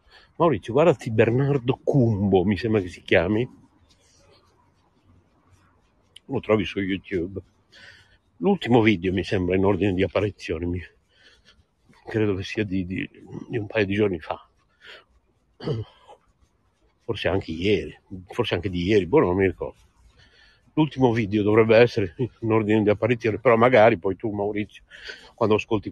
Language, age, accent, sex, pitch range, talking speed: Italian, 60-79, native, male, 105-130 Hz, 135 wpm